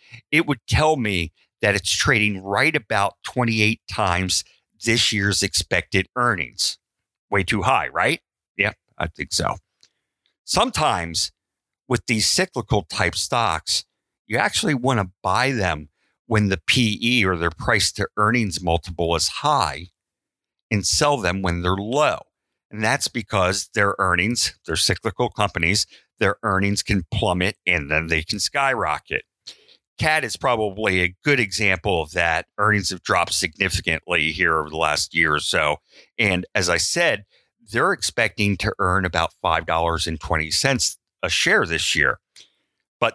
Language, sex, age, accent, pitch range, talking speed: English, male, 50-69, American, 90-120 Hz, 145 wpm